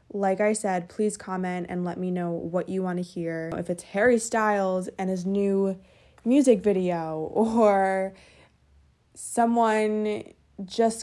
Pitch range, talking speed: 180-225 Hz, 140 wpm